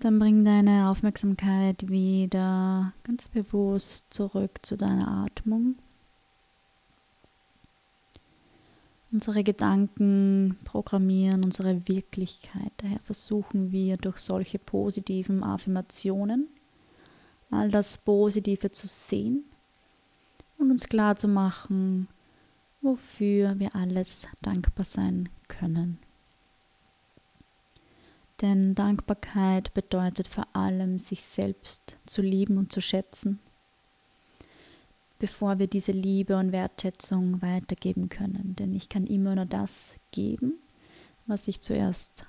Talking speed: 100 wpm